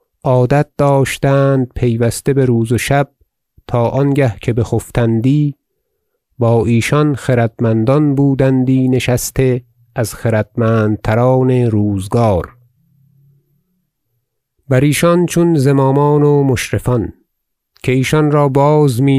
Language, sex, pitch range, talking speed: Persian, male, 115-140 Hz, 95 wpm